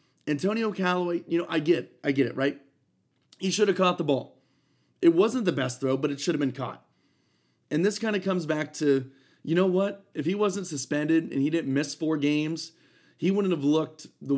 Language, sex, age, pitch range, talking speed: English, male, 30-49, 135-175 Hz, 215 wpm